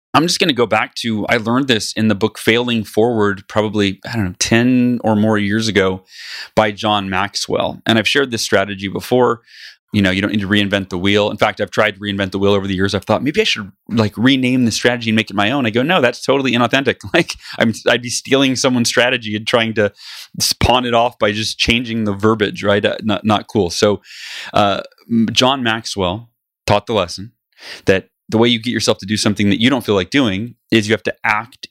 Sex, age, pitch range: male, 30-49, 105-120 Hz